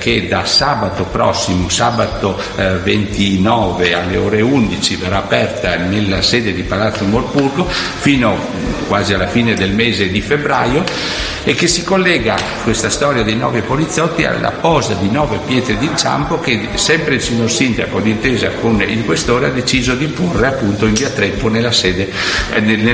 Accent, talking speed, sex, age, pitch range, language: native, 155 wpm, male, 60-79, 95-120 Hz, Italian